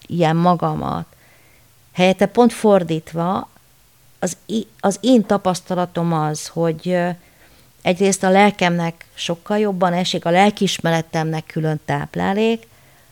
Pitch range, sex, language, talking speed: 160-195 Hz, female, Hungarian, 95 wpm